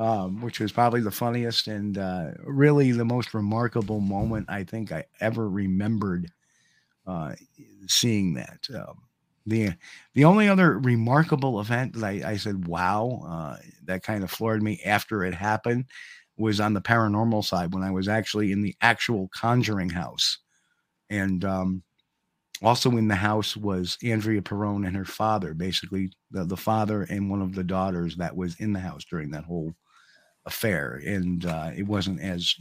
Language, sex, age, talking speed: English, male, 50-69, 165 wpm